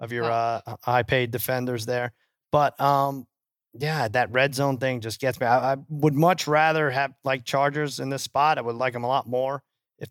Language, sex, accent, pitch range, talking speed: English, male, American, 110-140 Hz, 215 wpm